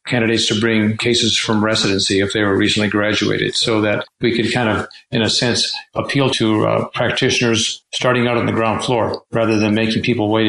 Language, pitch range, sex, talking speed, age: English, 105-120 Hz, male, 200 wpm, 50-69